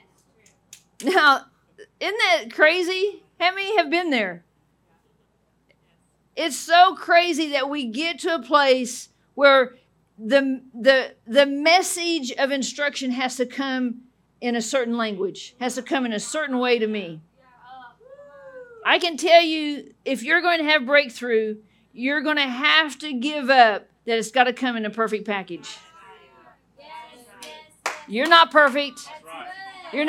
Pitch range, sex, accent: 230-315 Hz, female, American